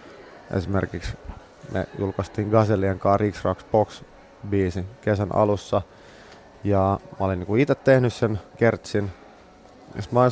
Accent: Finnish